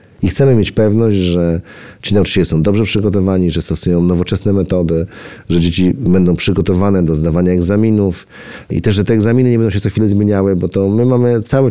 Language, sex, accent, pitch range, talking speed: Polish, male, native, 85-105 Hz, 190 wpm